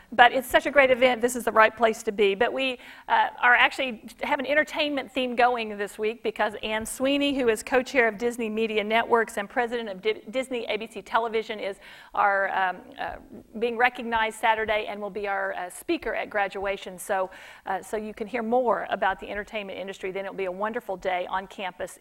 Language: English